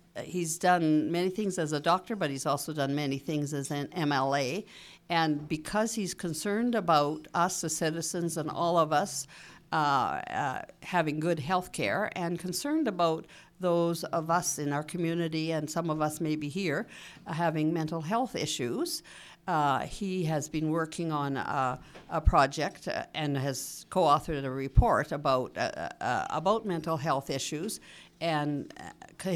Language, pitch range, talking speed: English, 150-175 Hz, 155 wpm